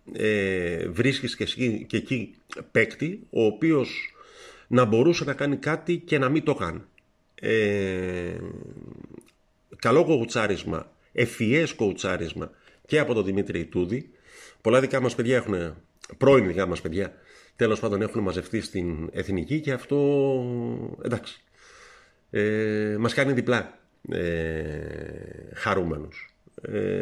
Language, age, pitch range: Greek, 50-69, 100-140 Hz